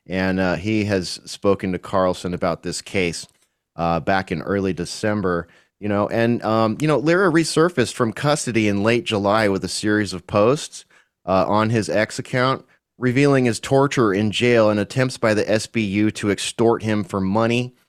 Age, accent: 30-49, American